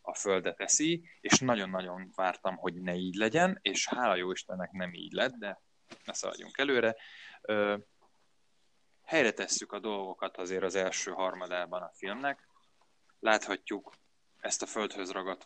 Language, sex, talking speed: Hungarian, male, 140 wpm